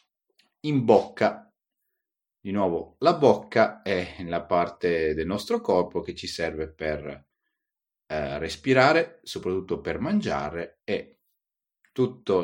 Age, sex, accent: 40-59, male, native